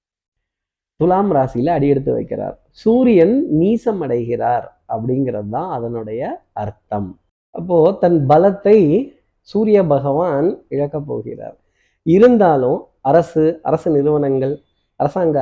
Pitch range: 140-210 Hz